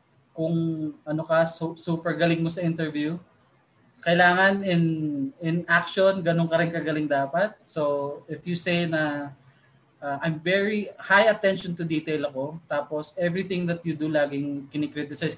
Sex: male